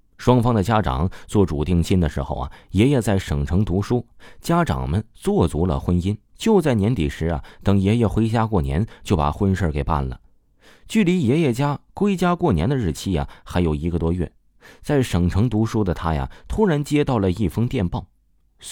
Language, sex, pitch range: Chinese, male, 80-120 Hz